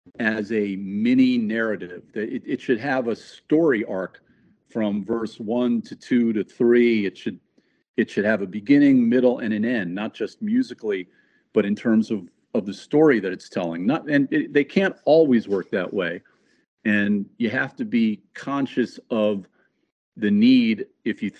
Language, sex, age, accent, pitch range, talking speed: English, male, 40-59, American, 105-150 Hz, 175 wpm